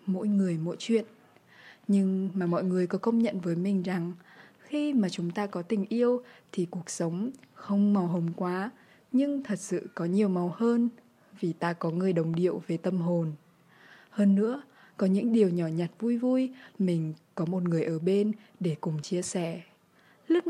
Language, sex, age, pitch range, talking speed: Vietnamese, female, 20-39, 175-215 Hz, 185 wpm